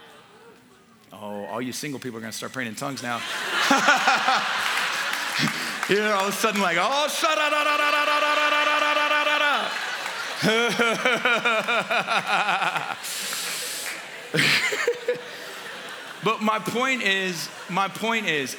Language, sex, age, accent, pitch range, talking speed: English, male, 40-59, American, 140-195 Hz, 95 wpm